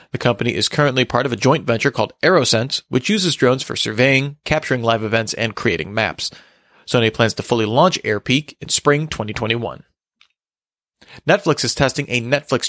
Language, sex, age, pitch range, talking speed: English, male, 30-49, 115-155 Hz, 170 wpm